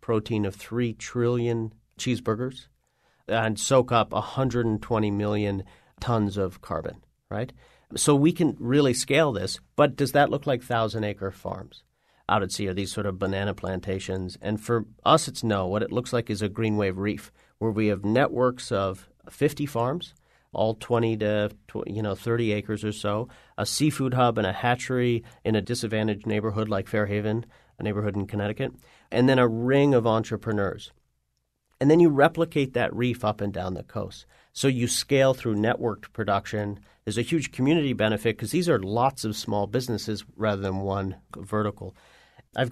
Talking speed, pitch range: 170 wpm, 105-125 Hz